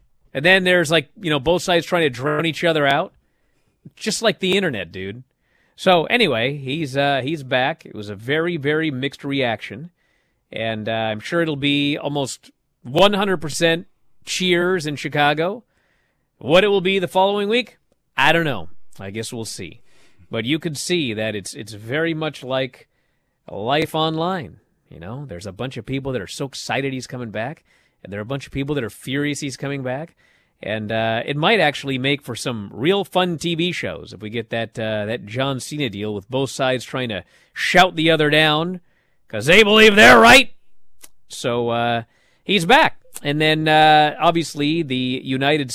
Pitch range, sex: 115-165 Hz, male